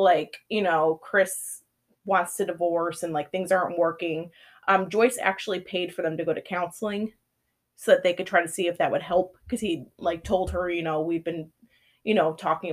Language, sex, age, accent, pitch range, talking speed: English, female, 20-39, American, 175-225 Hz, 210 wpm